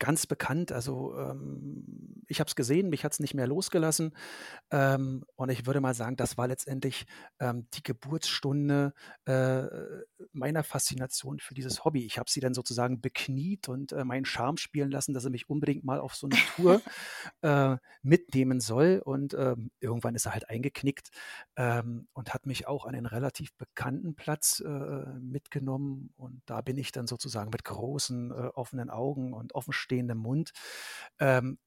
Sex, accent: male, German